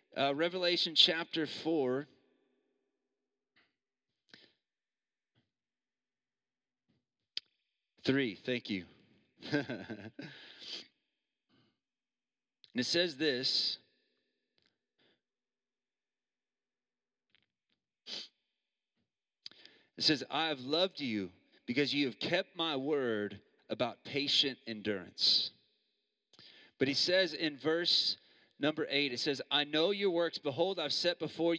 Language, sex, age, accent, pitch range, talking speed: English, male, 40-59, American, 135-190 Hz, 80 wpm